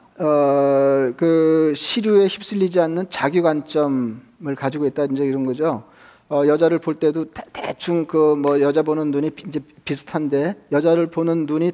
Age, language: 40-59, Korean